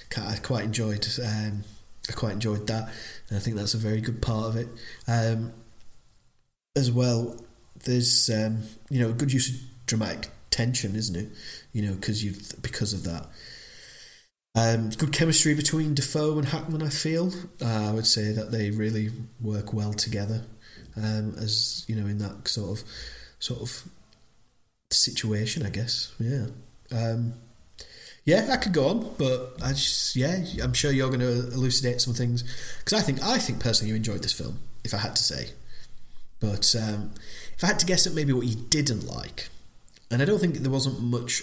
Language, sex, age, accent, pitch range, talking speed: English, male, 20-39, British, 110-135 Hz, 180 wpm